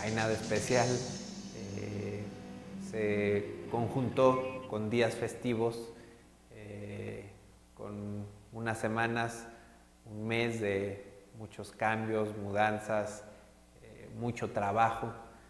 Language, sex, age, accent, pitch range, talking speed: Spanish, male, 30-49, Mexican, 100-120 Hz, 85 wpm